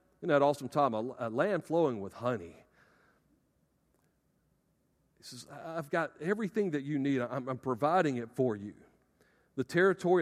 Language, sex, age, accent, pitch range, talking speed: English, male, 50-69, American, 140-200 Hz, 145 wpm